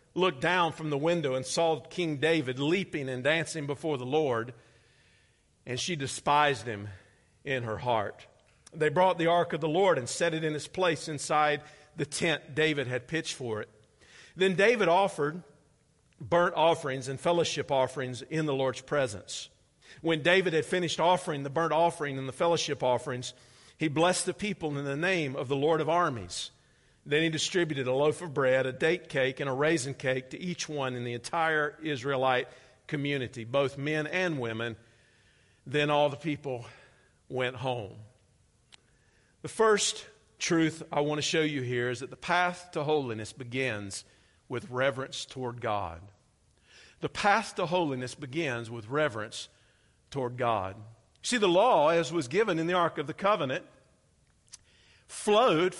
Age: 50-69